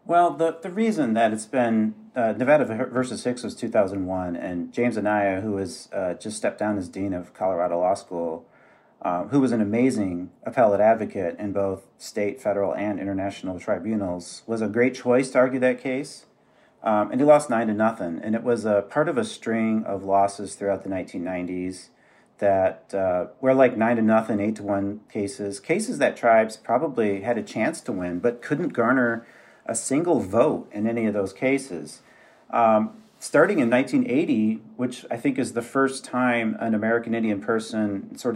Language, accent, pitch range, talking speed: English, American, 100-125 Hz, 190 wpm